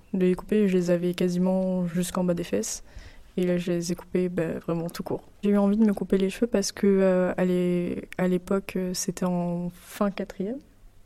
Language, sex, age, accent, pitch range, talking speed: French, female, 20-39, French, 180-205 Hz, 210 wpm